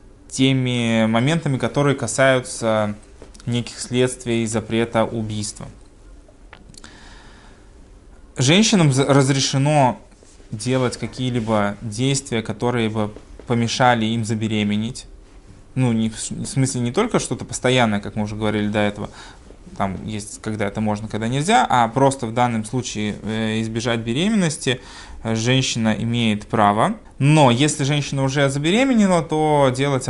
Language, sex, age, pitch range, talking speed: Russian, male, 20-39, 105-130 Hz, 110 wpm